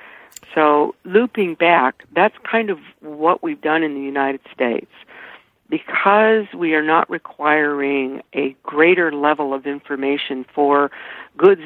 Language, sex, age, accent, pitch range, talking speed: English, female, 60-79, American, 145-180 Hz, 130 wpm